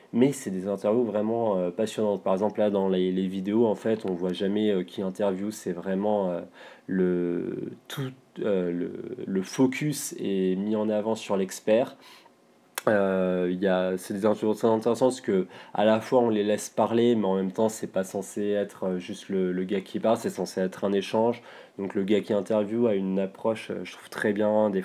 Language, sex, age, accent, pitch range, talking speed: French, male, 20-39, French, 95-110 Hz, 210 wpm